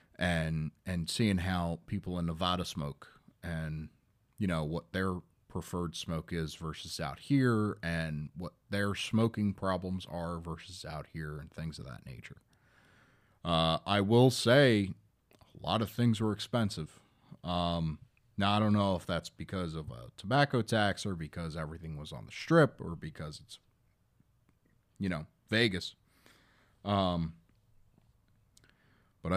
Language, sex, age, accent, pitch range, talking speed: English, male, 30-49, American, 85-110 Hz, 145 wpm